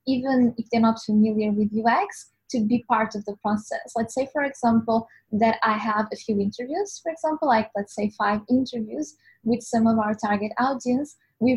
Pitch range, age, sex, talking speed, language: 215-265 Hz, 10-29, female, 190 wpm, English